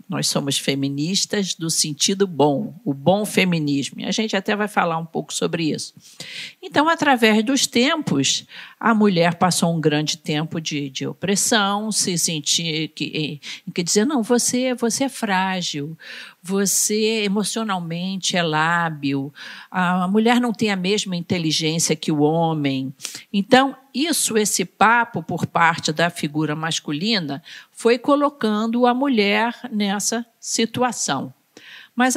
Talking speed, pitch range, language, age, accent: 135 wpm, 155-215 Hz, Portuguese, 50-69, Brazilian